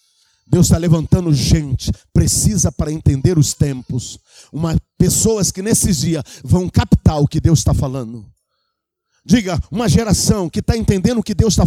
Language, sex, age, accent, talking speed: Portuguese, male, 50-69, Brazilian, 155 wpm